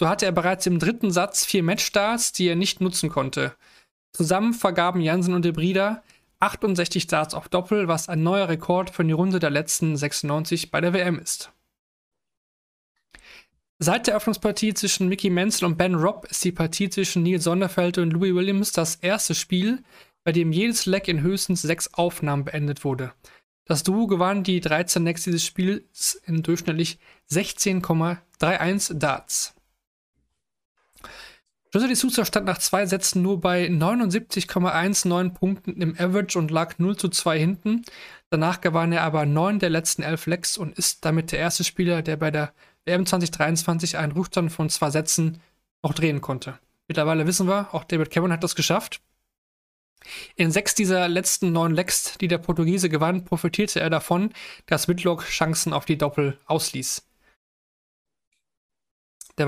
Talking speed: 160 wpm